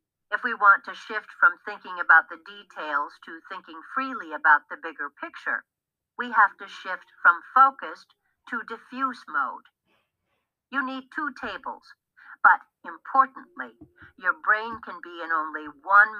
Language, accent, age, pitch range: English, American, 60-79, 185-295 Hz